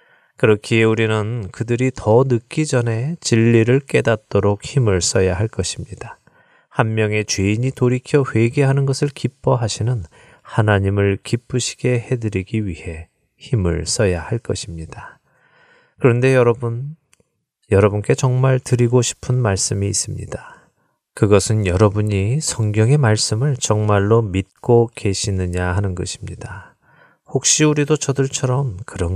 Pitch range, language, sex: 100-130 Hz, Korean, male